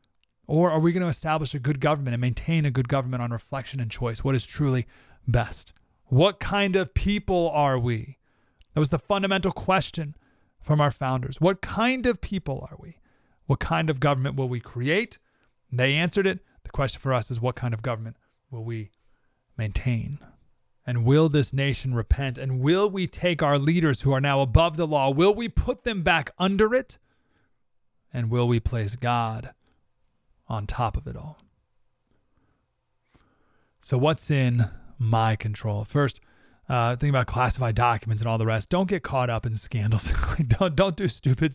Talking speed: 180 wpm